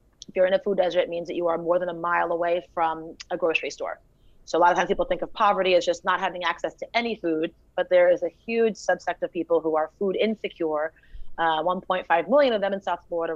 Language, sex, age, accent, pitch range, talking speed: English, female, 30-49, American, 165-190 Hz, 255 wpm